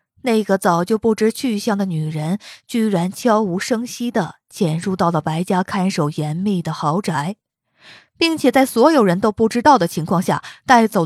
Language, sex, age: Chinese, female, 20-39